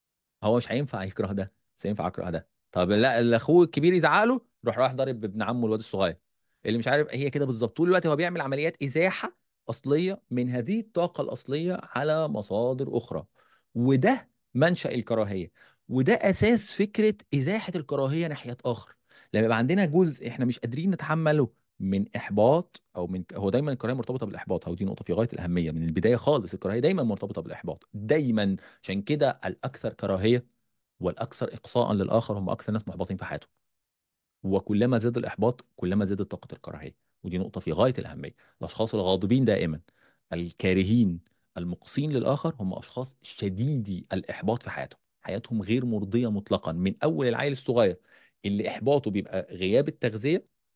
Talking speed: 155 wpm